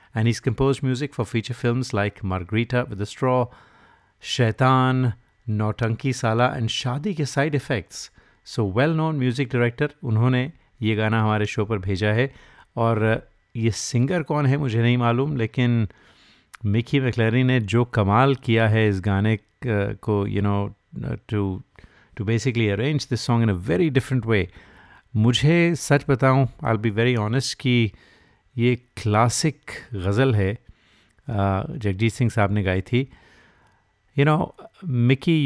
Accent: native